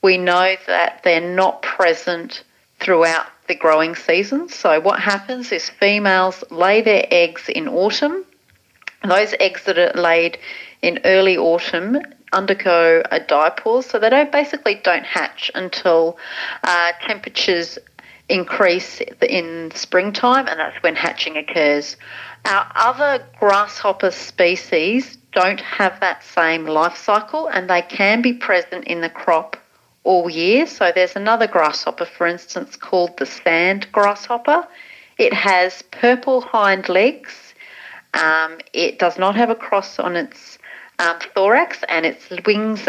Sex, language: female, English